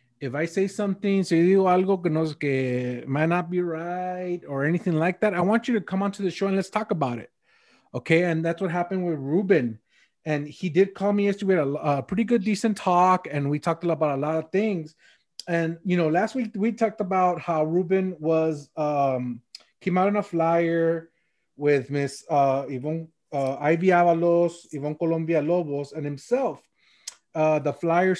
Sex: male